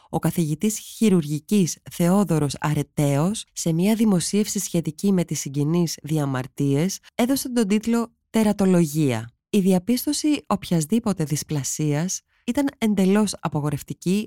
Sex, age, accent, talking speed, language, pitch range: female, 20-39, native, 100 wpm, Greek, 145-195 Hz